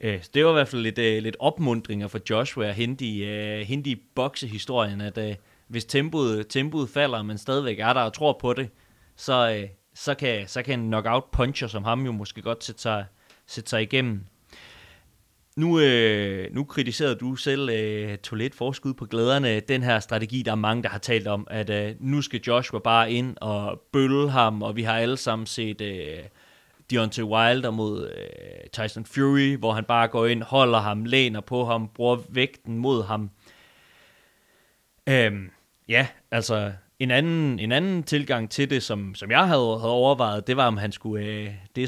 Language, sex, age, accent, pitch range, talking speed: Danish, male, 30-49, native, 110-135 Hz, 180 wpm